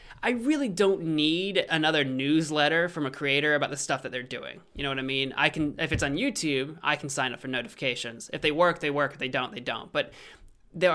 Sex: male